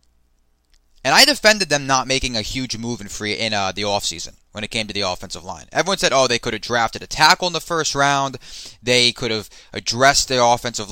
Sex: male